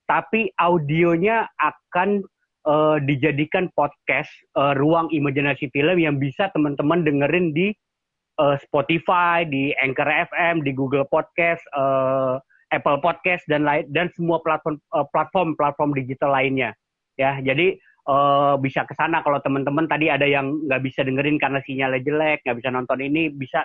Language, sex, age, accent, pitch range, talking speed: Indonesian, male, 30-49, native, 135-160 Hz, 140 wpm